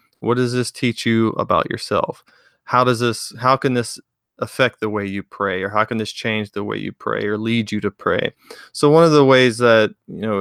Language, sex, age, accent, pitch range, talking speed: English, male, 20-39, American, 105-125 Hz, 230 wpm